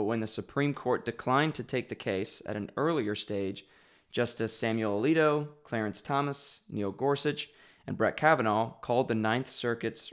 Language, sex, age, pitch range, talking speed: English, male, 20-39, 105-120 Hz, 165 wpm